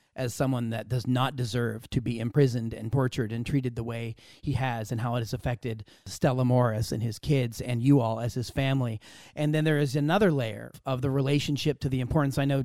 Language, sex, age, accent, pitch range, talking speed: English, male, 40-59, American, 120-150 Hz, 225 wpm